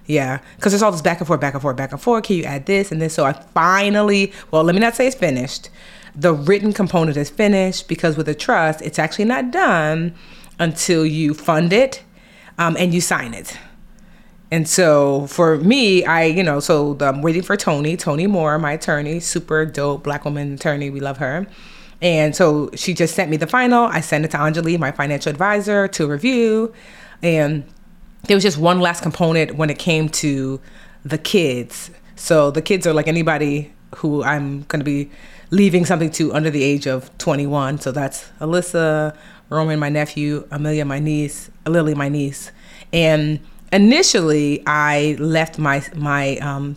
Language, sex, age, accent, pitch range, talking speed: English, female, 30-49, American, 150-195 Hz, 185 wpm